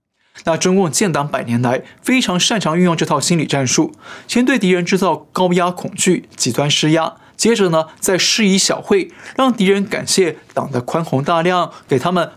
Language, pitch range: Chinese, 140-200 Hz